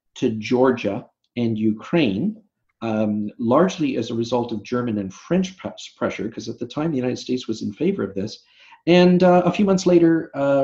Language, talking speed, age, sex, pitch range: English, 190 wpm, 40-59, male, 110-140 Hz